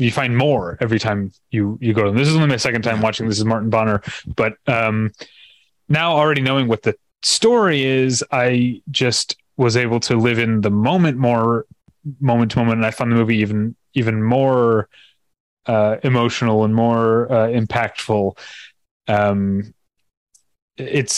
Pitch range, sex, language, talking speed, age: 105-125 Hz, male, English, 165 wpm, 30-49